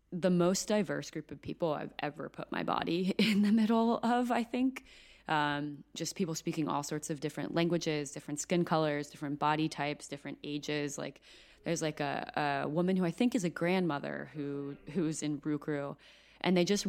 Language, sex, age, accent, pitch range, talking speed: English, female, 20-39, American, 145-180 Hz, 190 wpm